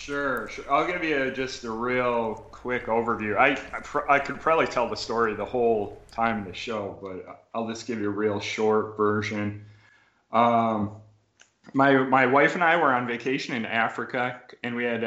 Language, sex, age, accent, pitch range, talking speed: English, male, 30-49, American, 110-120 Hz, 195 wpm